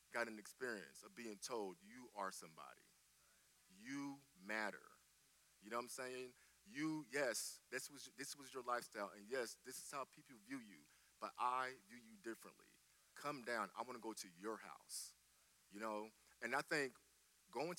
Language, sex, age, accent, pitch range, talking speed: English, male, 50-69, American, 105-155 Hz, 170 wpm